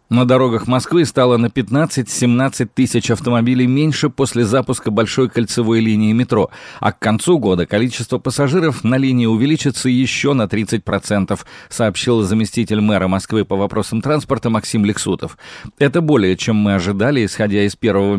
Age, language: 40-59, Russian